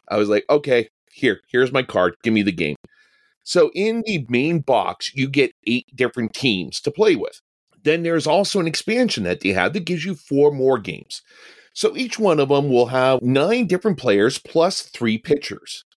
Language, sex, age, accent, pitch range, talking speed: English, male, 40-59, American, 125-180 Hz, 195 wpm